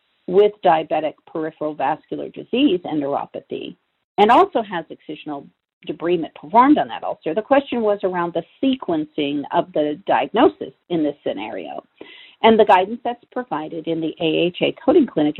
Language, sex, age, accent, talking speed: English, female, 50-69, American, 150 wpm